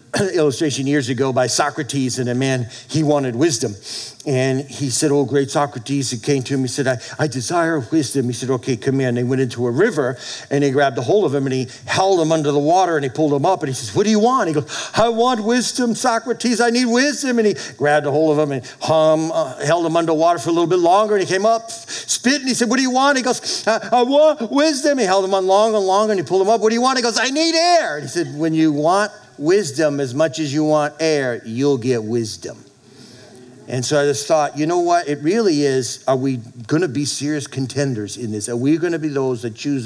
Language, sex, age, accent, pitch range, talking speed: English, male, 50-69, American, 130-180 Hz, 260 wpm